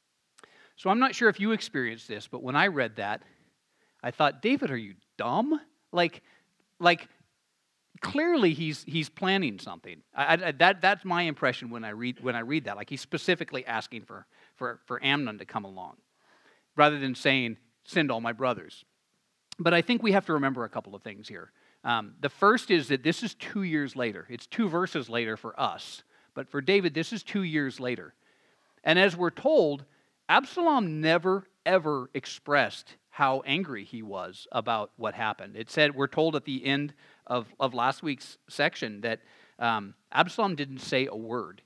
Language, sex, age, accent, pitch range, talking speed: English, male, 50-69, American, 130-190 Hz, 185 wpm